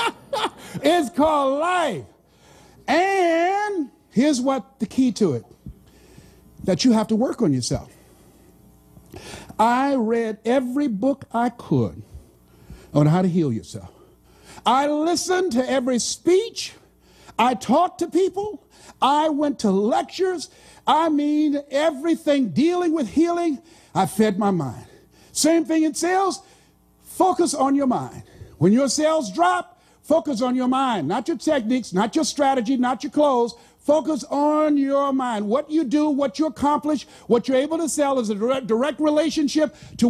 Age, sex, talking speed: 50-69, male, 145 wpm